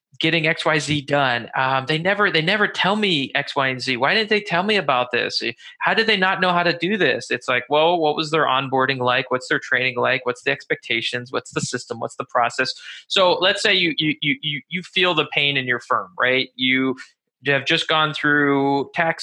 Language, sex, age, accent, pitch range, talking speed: English, male, 20-39, American, 130-160 Hz, 225 wpm